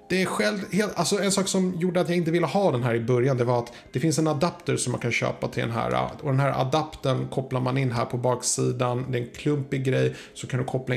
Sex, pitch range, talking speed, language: male, 120-155 Hz, 275 wpm, Swedish